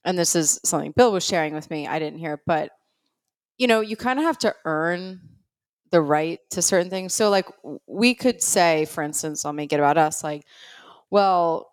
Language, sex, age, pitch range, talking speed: English, female, 30-49, 155-185 Hz, 205 wpm